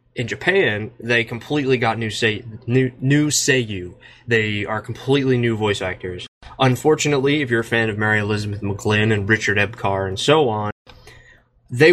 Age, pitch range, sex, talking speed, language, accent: 20-39, 105-135 Hz, male, 160 wpm, English, American